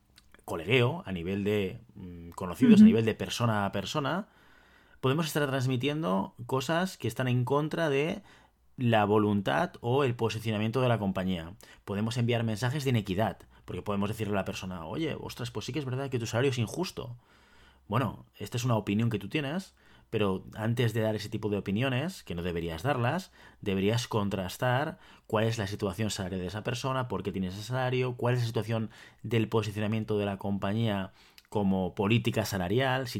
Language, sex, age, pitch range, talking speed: Spanish, male, 30-49, 100-130 Hz, 180 wpm